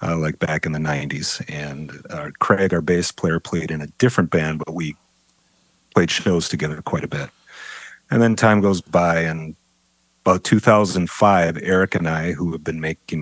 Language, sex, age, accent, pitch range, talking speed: English, male, 40-59, American, 85-110 Hz, 180 wpm